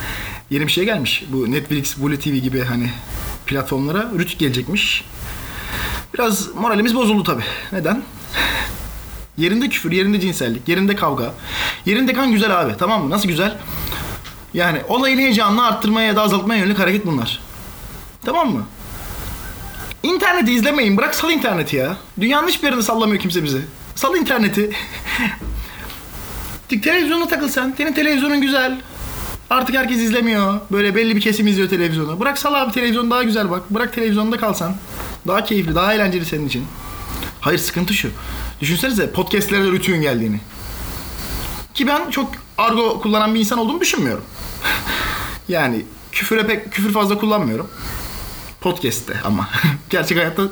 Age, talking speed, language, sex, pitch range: 30-49, 140 wpm, Turkish, male, 145-230 Hz